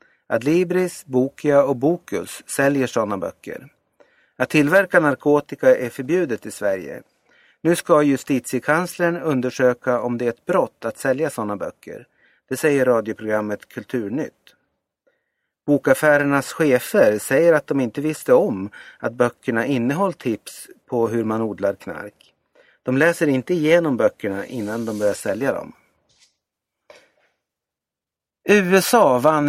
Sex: male